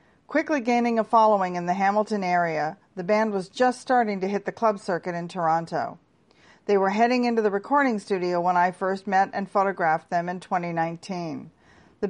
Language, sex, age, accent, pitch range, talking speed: English, female, 50-69, American, 180-230 Hz, 185 wpm